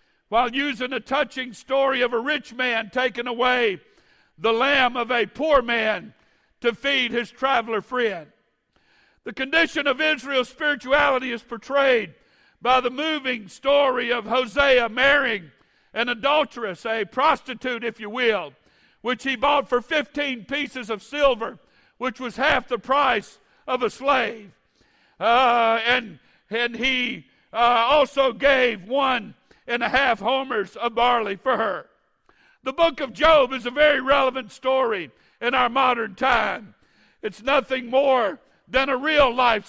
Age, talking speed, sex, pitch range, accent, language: 60-79, 140 wpm, male, 235-280 Hz, American, English